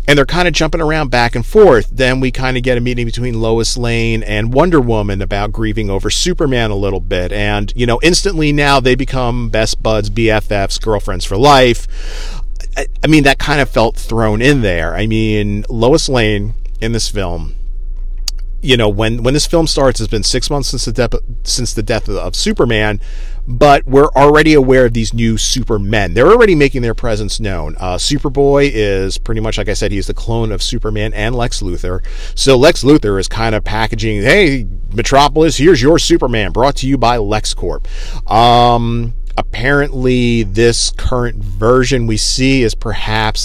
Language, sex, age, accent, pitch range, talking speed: English, male, 40-59, American, 105-130 Hz, 185 wpm